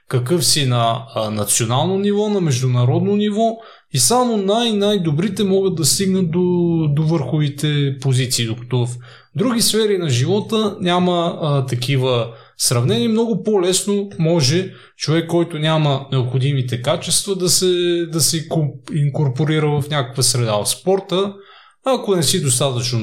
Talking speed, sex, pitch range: 135 wpm, male, 135-180 Hz